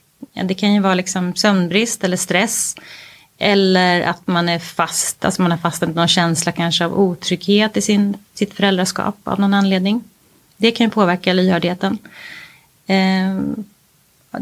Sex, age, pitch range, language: female, 30-49, 180-205 Hz, Swahili